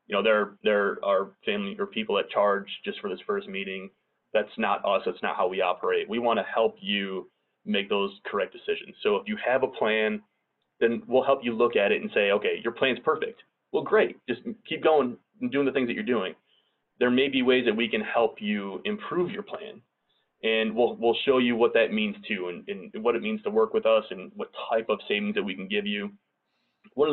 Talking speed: 230 wpm